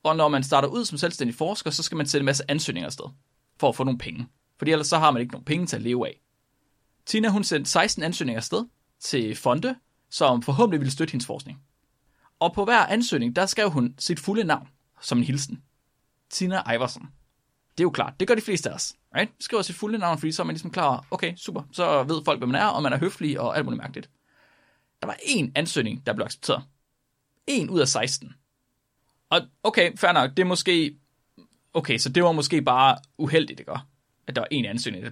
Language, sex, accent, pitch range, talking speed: Danish, male, native, 130-165 Hz, 220 wpm